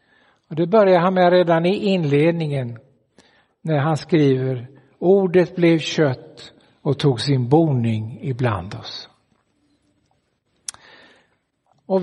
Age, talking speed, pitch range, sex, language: 60-79, 105 wpm, 140-185 Hz, male, Swedish